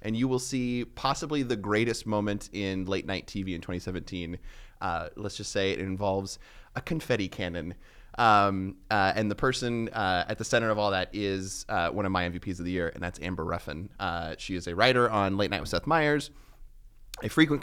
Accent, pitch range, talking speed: American, 95-110 Hz, 210 wpm